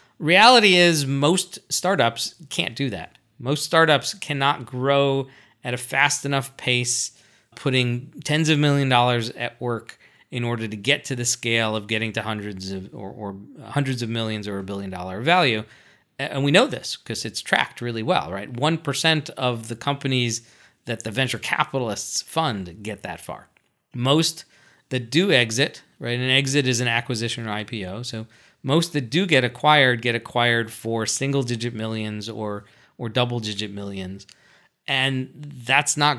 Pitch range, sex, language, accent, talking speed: 115-145 Hz, male, English, American, 165 wpm